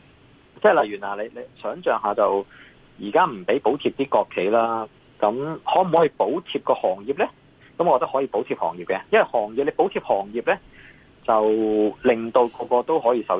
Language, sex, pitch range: Chinese, male, 115-160 Hz